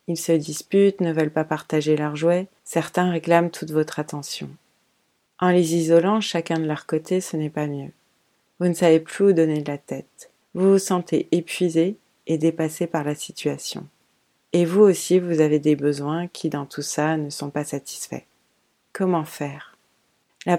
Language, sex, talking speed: French, female, 180 wpm